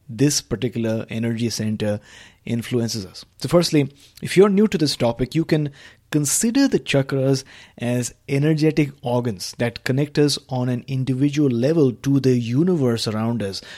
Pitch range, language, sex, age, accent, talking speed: 115-140 Hz, English, male, 30-49, Indian, 150 wpm